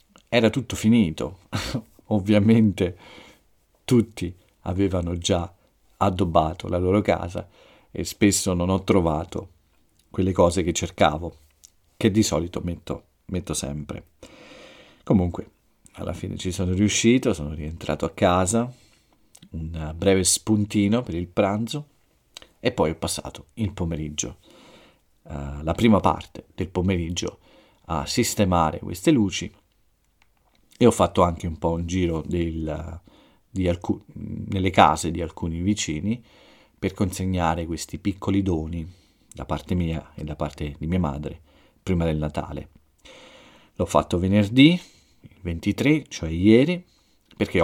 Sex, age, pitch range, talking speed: male, 50-69, 80-100 Hz, 120 wpm